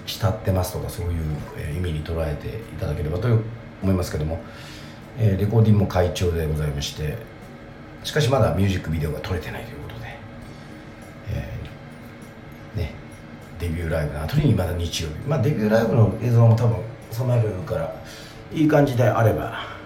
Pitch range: 85-115 Hz